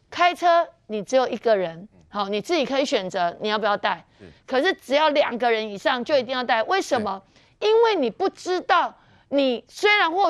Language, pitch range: Chinese, 225-315 Hz